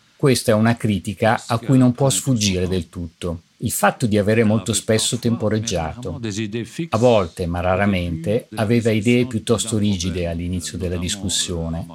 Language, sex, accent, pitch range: Italian, male, native, 90-110 Hz